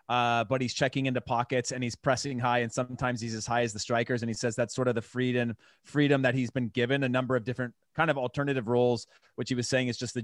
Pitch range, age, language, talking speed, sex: 120-155 Hz, 30-49, English, 270 wpm, male